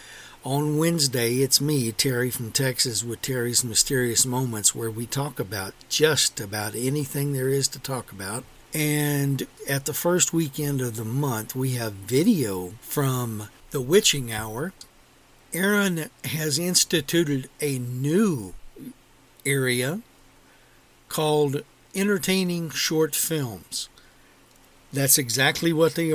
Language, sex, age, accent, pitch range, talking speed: English, male, 60-79, American, 130-165 Hz, 120 wpm